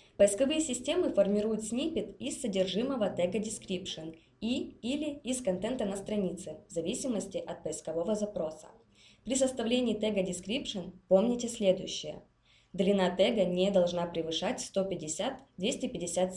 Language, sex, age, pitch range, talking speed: Russian, female, 20-39, 170-210 Hz, 115 wpm